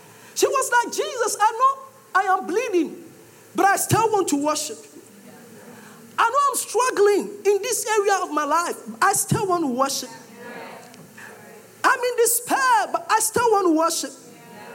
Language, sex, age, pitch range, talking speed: English, male, 50-69, 305-425 Hz, 165 wpm